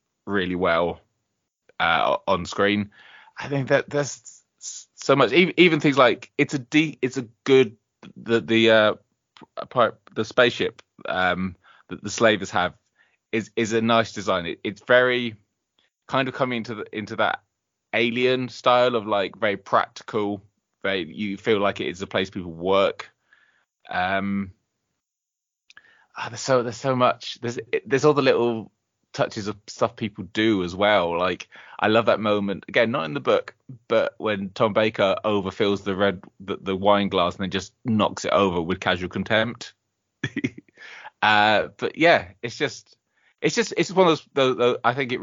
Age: 20-39